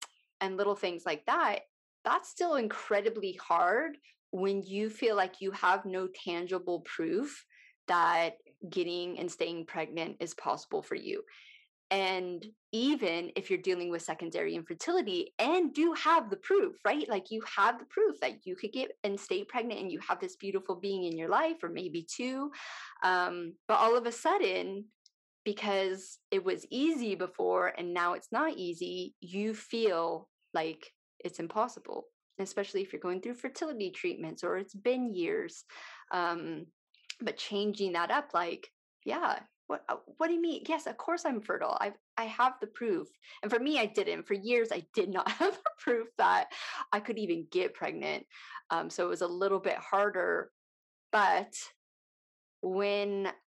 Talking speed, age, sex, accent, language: 165 wpm, 20-39, female, American, English